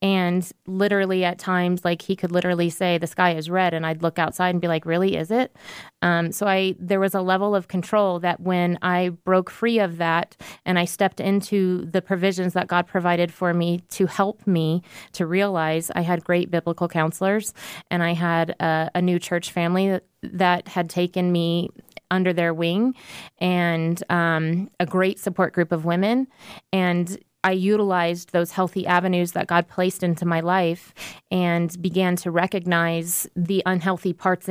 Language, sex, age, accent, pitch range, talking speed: English, female, 20-39, American, 175-195 Hz, 175 wpm